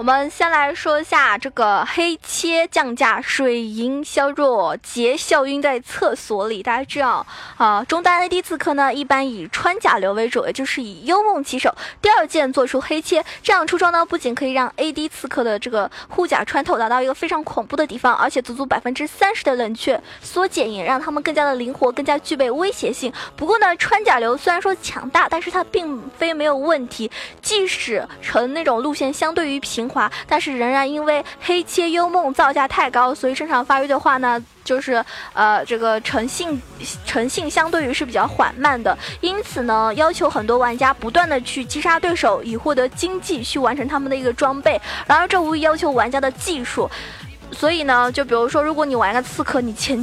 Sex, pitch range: female, 250-330 Hz